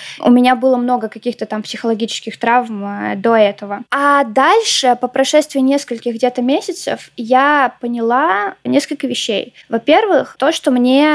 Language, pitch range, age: Russian, 235-270 Hz, 20-39